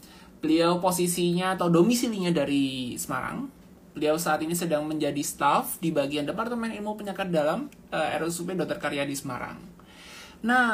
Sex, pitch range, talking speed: male, 160-230 Hz, 140 wpm